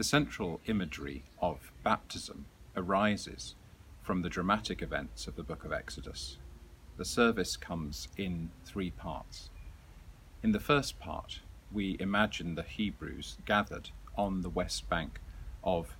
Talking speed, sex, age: 130 wpm, male, 40-59